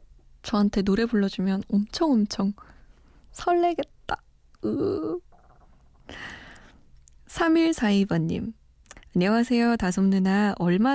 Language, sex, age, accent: Korean, female, 20-39, native